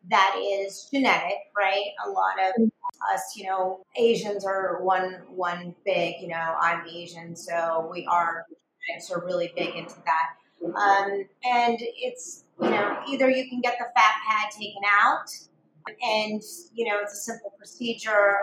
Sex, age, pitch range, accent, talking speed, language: female, 30-49, 185-245 Hz, American, 155 wpm, English